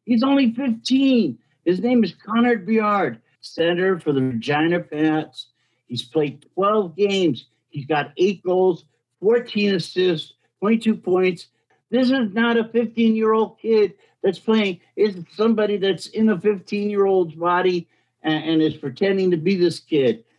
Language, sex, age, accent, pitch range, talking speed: English, male, 60-79, American, 140-185 Hz, 140 wpm